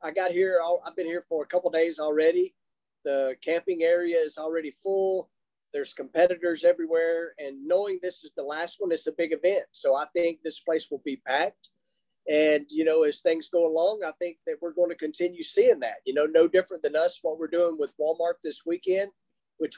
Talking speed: 215 wpm